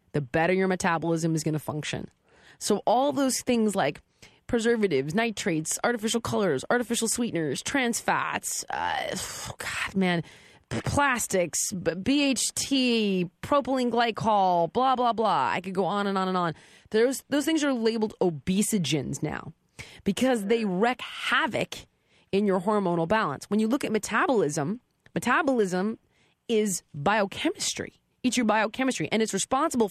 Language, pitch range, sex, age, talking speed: English, 180-250 Hz, female, 20-39, 140 wpm